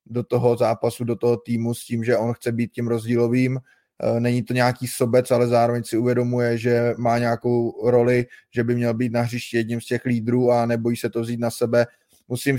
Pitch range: 120-125 Hz